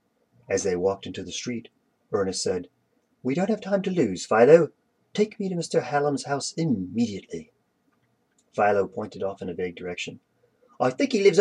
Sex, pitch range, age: male, 145-230 Hz, 40-59